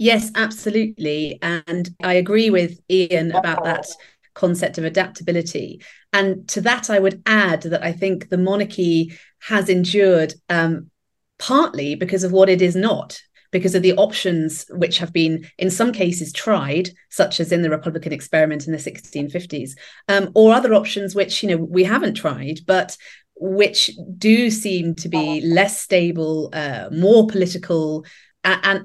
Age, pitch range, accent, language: 30-49, 165-200 Hz, British, English